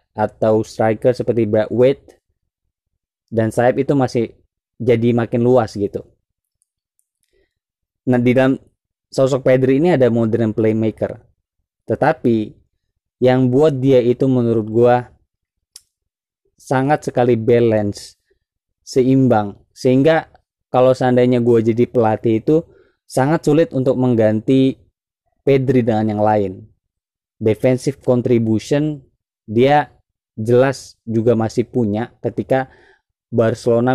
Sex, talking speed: male, 100 wpm